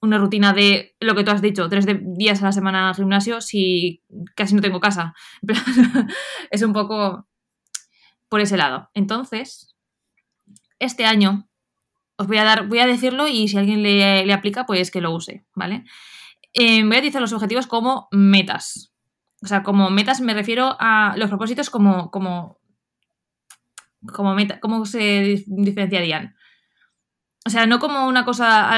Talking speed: 165 wpm